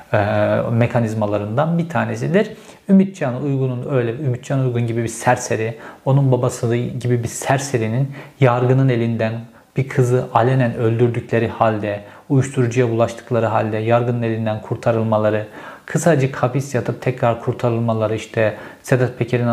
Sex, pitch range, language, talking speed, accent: male, 115-140 Hz, Turkish, 120 wpm, native